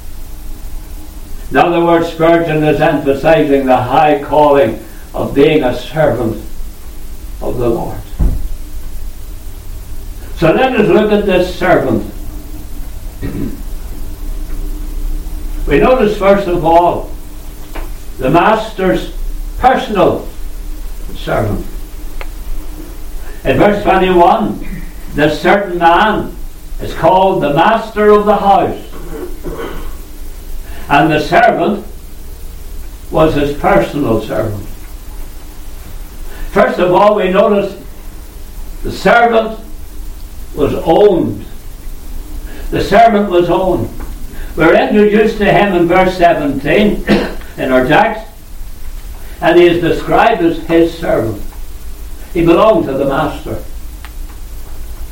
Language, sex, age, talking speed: English, male, 60-79, 95 wpm